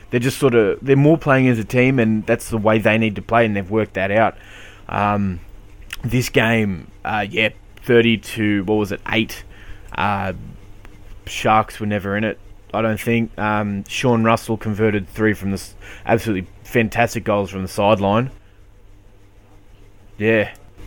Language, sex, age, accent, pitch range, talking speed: English, male, 20-39, Australian, 100-115 Hz, 165 wpm